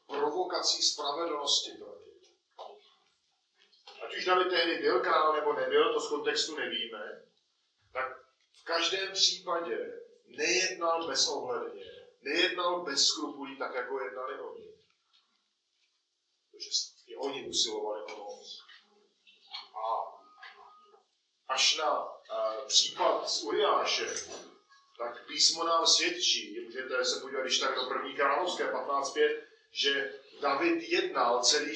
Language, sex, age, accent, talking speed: Czech, male, 40-59, native, 110 wpm